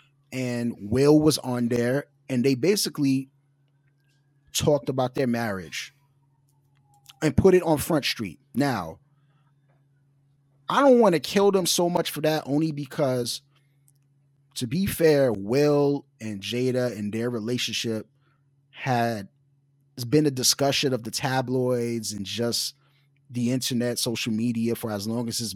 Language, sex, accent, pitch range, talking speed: English, male, American, 120-145 Hz, 135 wpm